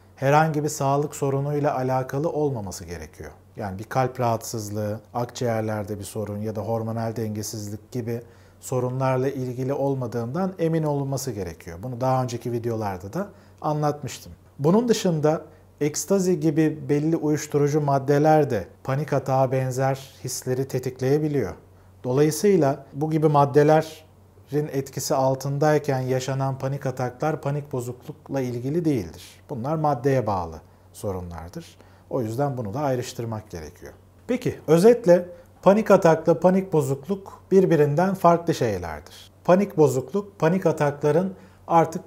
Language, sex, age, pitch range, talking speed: Turkish, male, 40-59, 115-155 Hz, 115 wpm